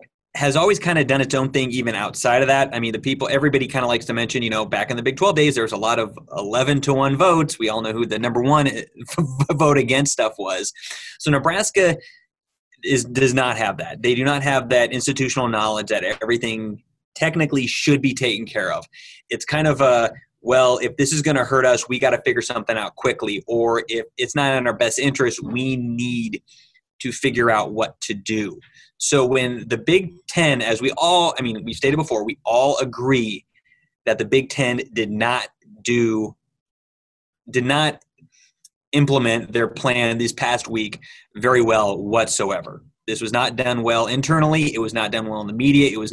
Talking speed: 205 wpm